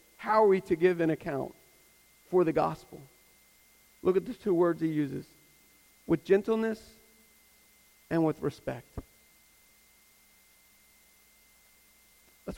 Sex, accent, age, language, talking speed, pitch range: male, American, 40-59, English, 110 wpm, 165-195 Hz